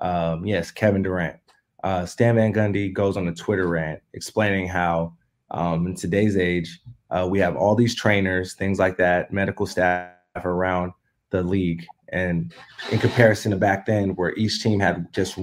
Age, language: 20-39, English